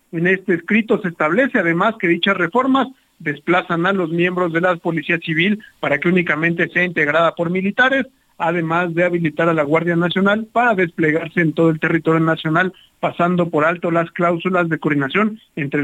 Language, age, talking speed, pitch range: Spanish, 50-69, 175 wpm, 160-200 Hz